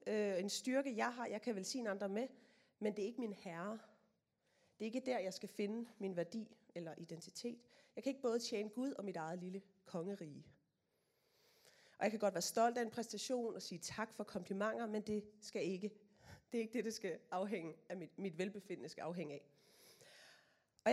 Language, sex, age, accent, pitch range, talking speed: Danish, female, 30-49, native, 185-230 Hz, 200 wpm